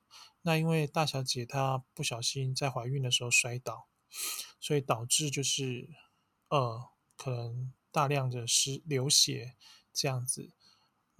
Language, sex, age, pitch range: Chinese, male, 20-39, 125-145 Hz